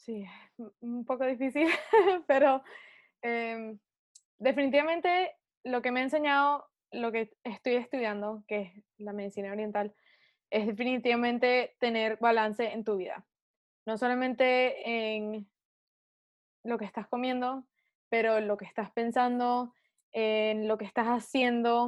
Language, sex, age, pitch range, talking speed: Spanish, female, 20-39, 225-270 Hz, 130 wpm